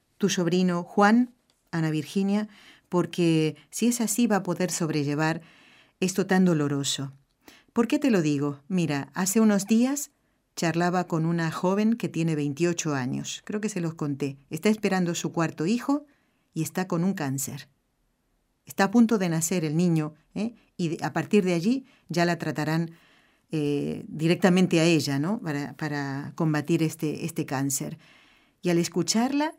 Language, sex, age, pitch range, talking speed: Spanish, female, 40-59, 155-205 Hz, 160 wpm